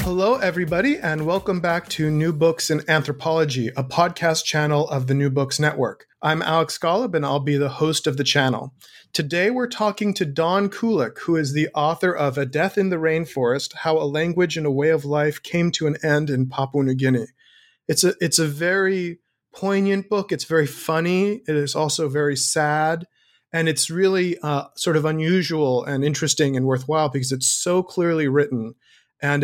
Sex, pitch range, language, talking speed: male, 135-165 Hz, English, 190 wpm